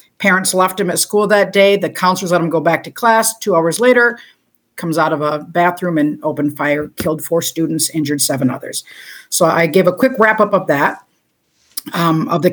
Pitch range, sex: 170-215 Hz, female